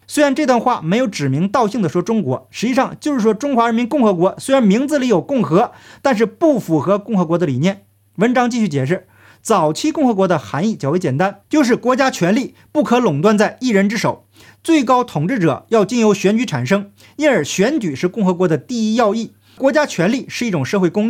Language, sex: Chinese, male